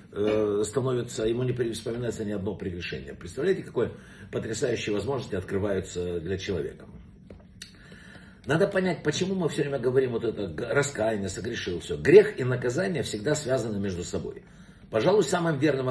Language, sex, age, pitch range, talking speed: Russian, male, 60-79, 115-155 Hz, 135 wpm